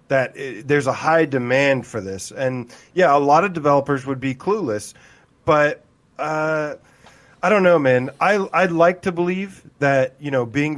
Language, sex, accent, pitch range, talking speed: English, male, American, 125-150 Hz, 180 wpm